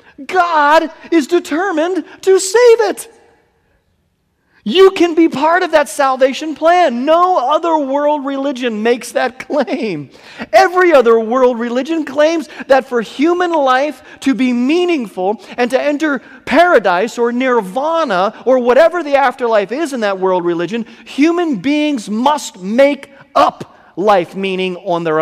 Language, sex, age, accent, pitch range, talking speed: English, male, 40-59, American, 230-315 Hz, 135 wpm